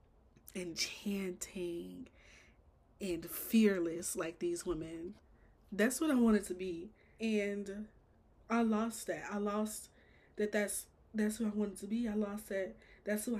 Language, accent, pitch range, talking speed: English, American, 185-215 Hz, 145 wpm